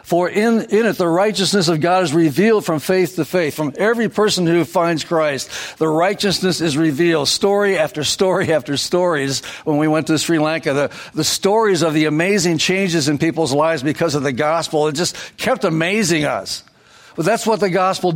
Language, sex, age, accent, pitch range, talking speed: English, male, 60-79, American, 145-180 Hz, 195 wpm